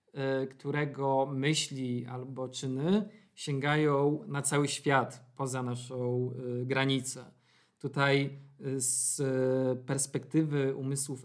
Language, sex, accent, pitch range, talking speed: Polish, male, native, 130-140 Hz, 80 wpm